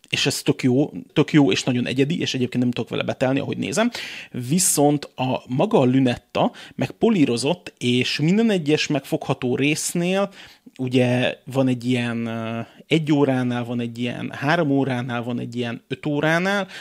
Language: Hungarian